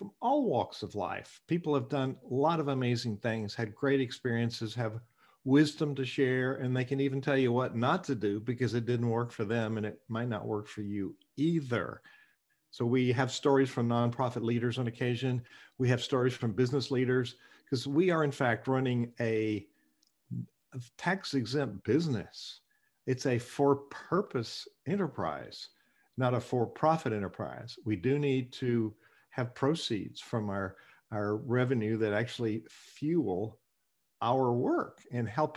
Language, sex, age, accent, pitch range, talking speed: English, male, 50-69, American, 110-135 Hz, 155 wpm